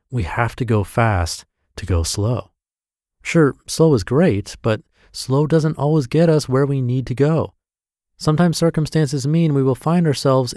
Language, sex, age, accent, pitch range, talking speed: English, male, 30-49, American, 95-130 Hz, 170 wpm